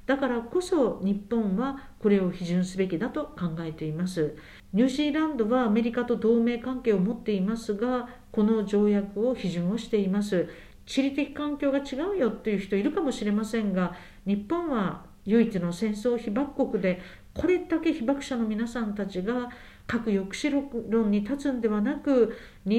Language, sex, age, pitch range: Japanese, female, 50-69, 200-260 Hz